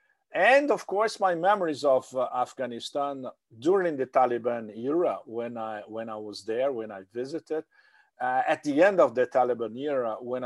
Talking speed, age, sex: 165 wpm, 50-69, male